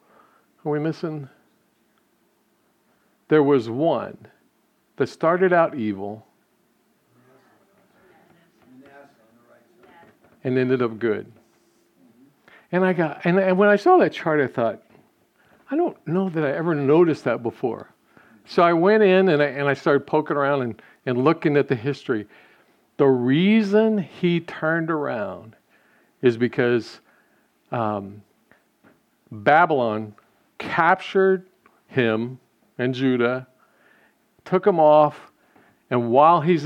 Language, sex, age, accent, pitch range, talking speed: English, male, 50-69, American, 120-175 Hz, 115 wpm